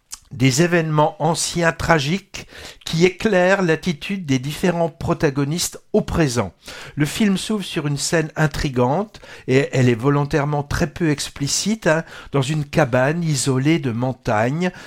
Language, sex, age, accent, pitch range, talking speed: French, male, 60-79, French, 145-185 Hz, 135 wpm